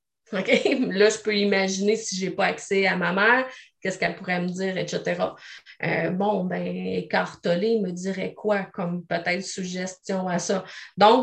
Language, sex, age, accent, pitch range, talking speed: French, female, 30-49, Canadian, 195-230 Hz, 170 wpm